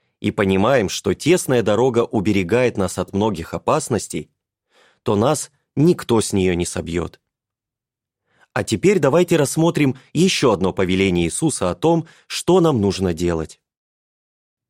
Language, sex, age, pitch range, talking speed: Russian, male, 30-49, 95-145 Hz, 125 wpm